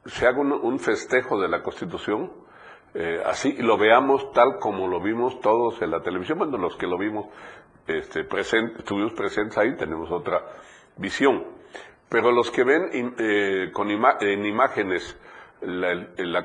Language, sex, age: Spanish, male, 50-69